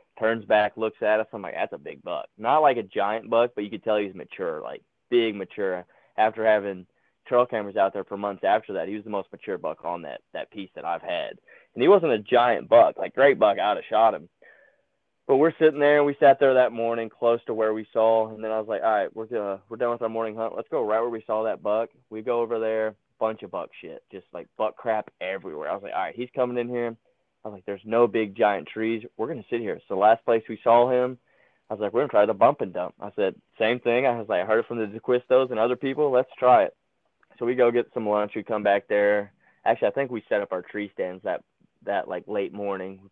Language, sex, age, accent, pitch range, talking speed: English, male, 20-39, American, 105-120 Hz, 270 wpm